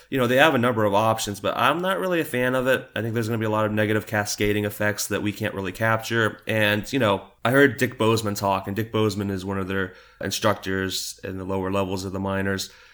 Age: 20-39